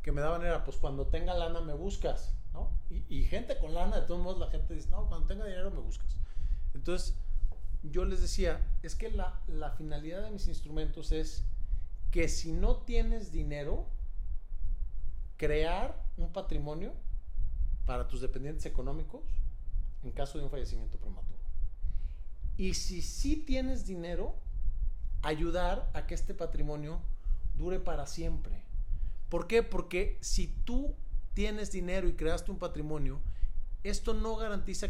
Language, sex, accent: Spanish, male, Mexican